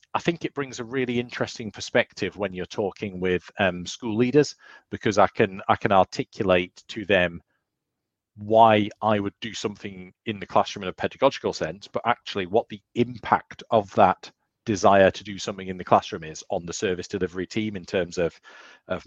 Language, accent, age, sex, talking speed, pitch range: English, British, 40-59, male, 185 wpm, 90-110 Hz